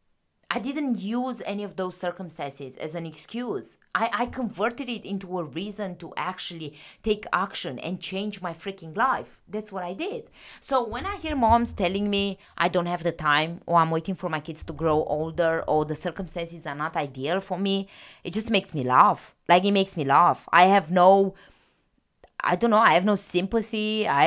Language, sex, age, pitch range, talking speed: English, female, 20-39, 160-215 Hz, 200 wpm